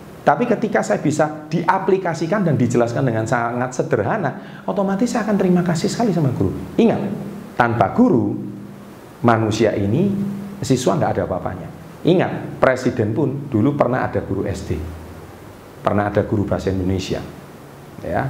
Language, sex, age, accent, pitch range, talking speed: Indonesian, male, 40-59, native, 105-170 Hz, 135 wpm